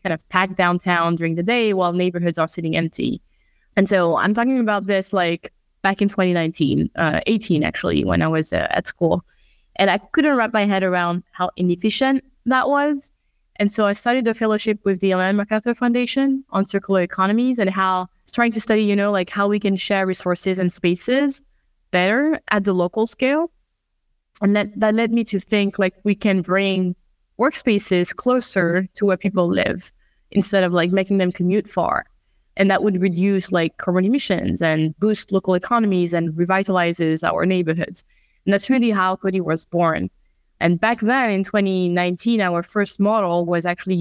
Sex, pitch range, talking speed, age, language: female, 175-210 Hz, 180 wpm, 20-39, English